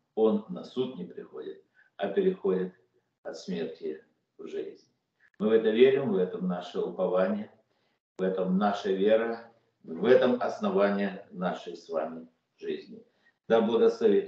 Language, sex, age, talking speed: Russian, male, 50-69, 135 wpm